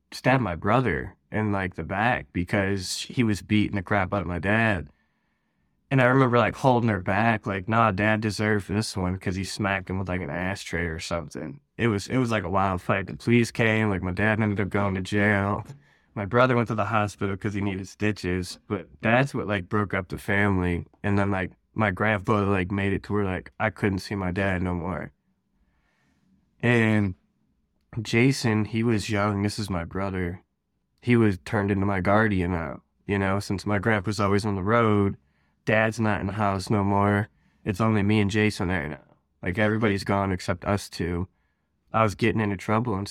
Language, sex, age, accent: English, male, 20-39, American